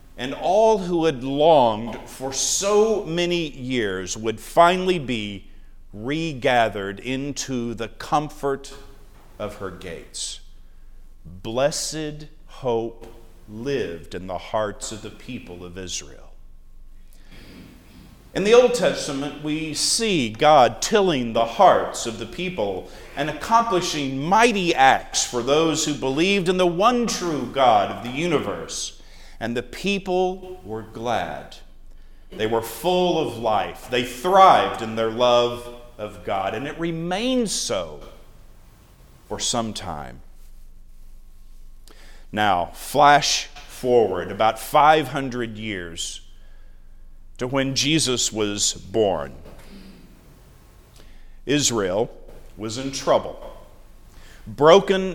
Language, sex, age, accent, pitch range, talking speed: English, male, 50-69, American, 100-160 Hz, 110 wpm